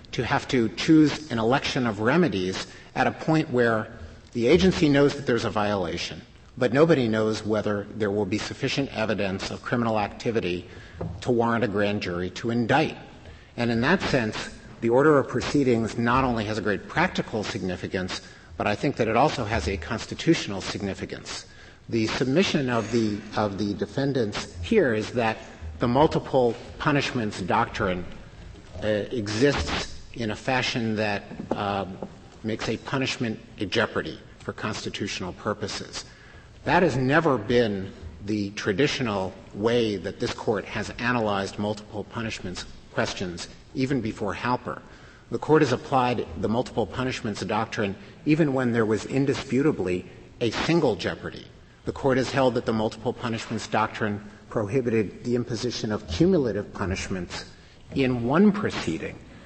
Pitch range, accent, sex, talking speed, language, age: 105-125 Hz, American, male, 145 wpm, English, 50-69